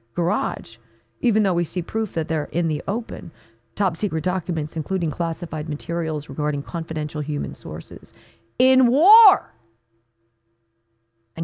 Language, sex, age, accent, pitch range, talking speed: English, female, 40-59, American, 115-175 Hz, 125 wpm